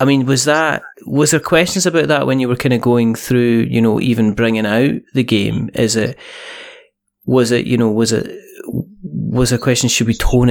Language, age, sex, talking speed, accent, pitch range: English, 30-49, male, 210 wpm, British, 110-135 Hz